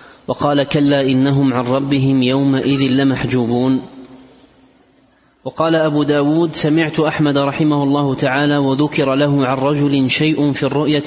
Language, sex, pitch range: Arabic, male, 130-150 Hz